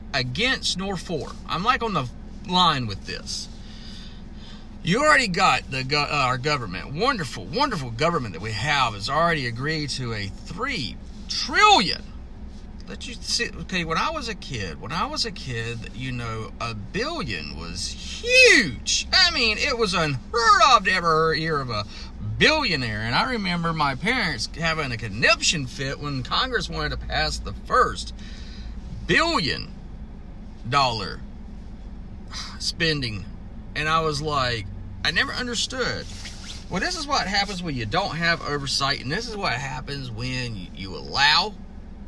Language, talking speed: English, 155 wpm